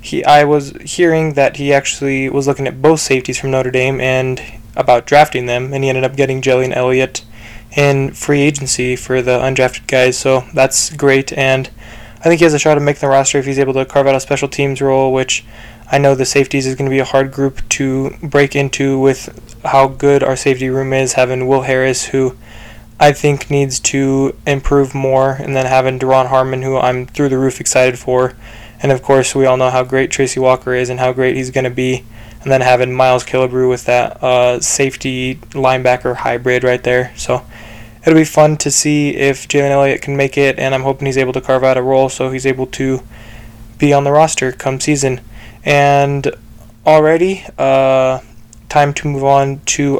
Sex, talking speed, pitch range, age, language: male, 210 wpm, 125-140 Hz, 20-39, English